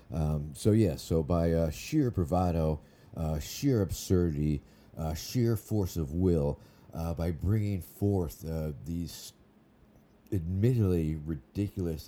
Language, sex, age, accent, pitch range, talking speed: English, male, 50-69, American, 80-100 Hz, 125 wpm